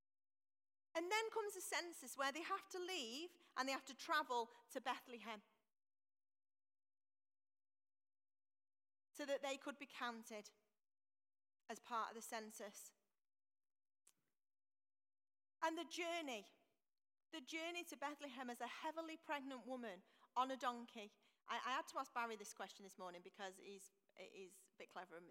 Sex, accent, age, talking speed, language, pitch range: female, British, 40-59, 140 wpm, English, 210-275 Hz